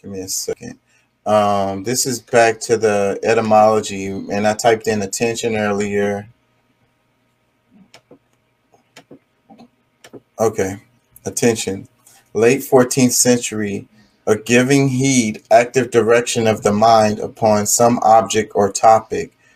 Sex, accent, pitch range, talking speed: male, American, 110-125 Hz, 105 wpm